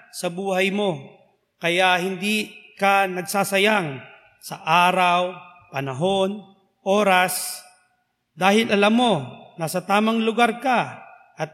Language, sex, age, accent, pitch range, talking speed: Filipino, male, 40-59, native, 180-225 Hz, 100 wpm